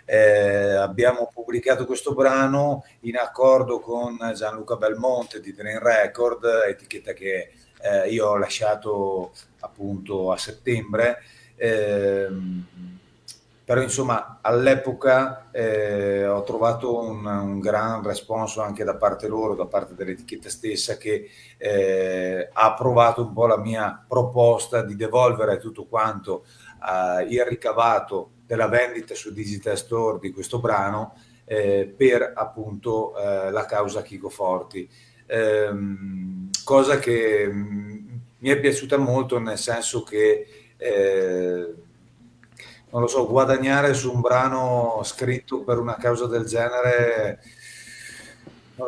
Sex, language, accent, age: male, Italian, native, 30-49